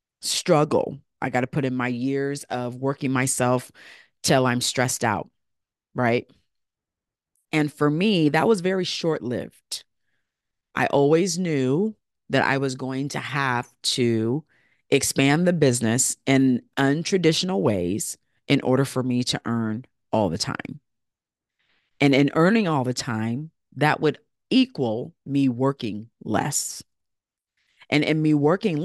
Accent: American